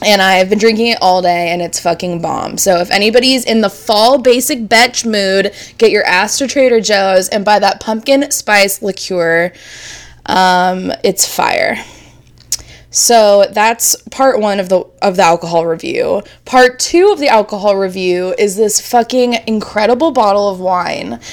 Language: English